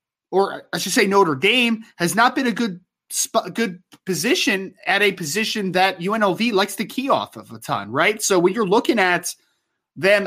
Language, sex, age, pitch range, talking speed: English, male, 20-39, 170-215 Hz, 195 wpm